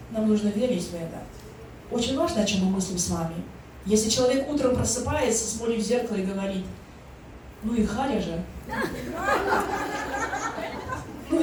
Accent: native